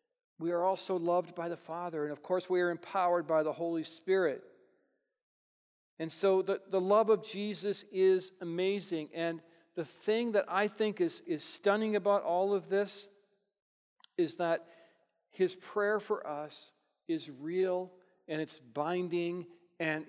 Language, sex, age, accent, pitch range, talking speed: English, male, 50-69, American, 175-215 Hz, 150 wpm